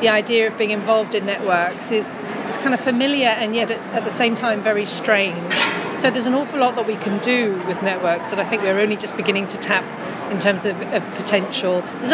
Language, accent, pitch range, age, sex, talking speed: English, British, 195-225 Hz, 40-59, female, 230 wpm